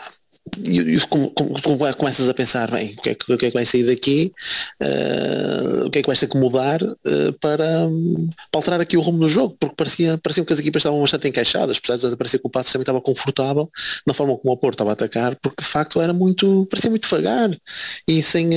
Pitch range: 120-150 Hz